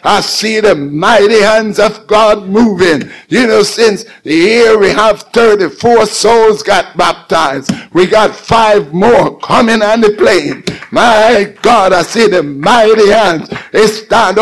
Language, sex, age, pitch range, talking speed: English, male, 60-79, 200-220 Hz, 150 wpm